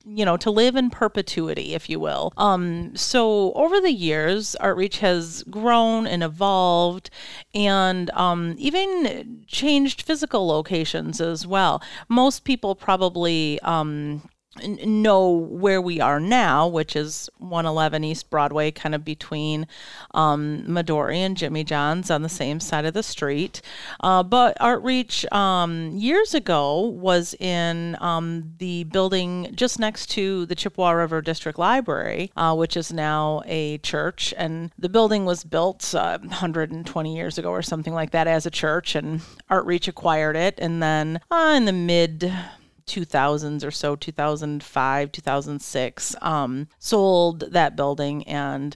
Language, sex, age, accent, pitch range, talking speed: English, female, 40-59, American, 155-190 Hz, 145 wpm